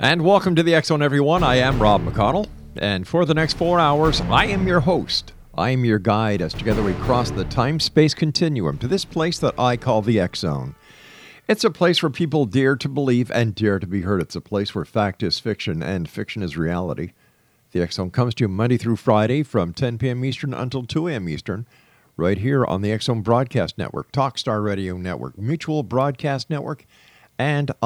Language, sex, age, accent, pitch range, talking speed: English, male, 50-69, American, 100-140 Hz, 200 wpm